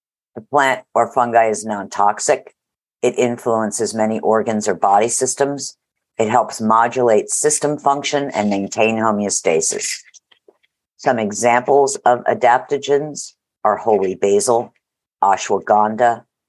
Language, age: English, 50-69